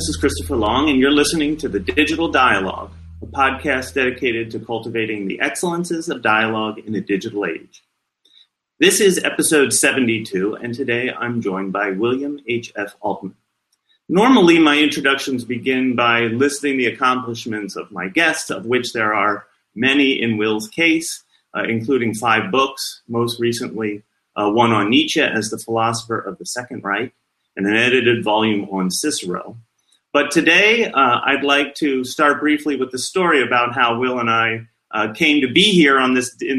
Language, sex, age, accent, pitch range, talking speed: English, male, 30-49, American, 115-140 Hz, 165 wpm